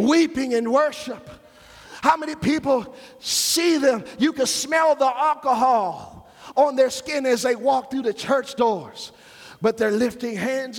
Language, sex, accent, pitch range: English, male, American, 255-325 Hz